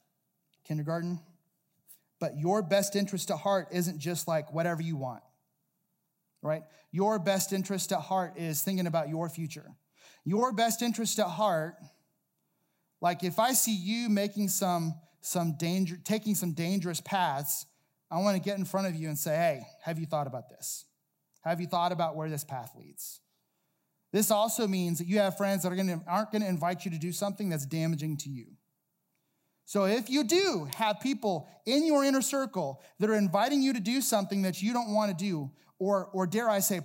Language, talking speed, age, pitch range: English, 185 wpm, 30-49, 155-200 Hz